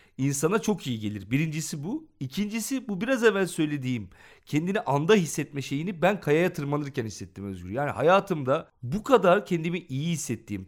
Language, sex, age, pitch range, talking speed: Turkish, male, 40-59, 130-175 Hz, 150 wpm